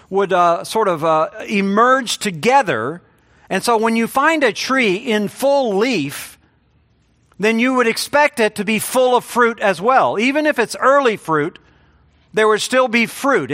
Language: English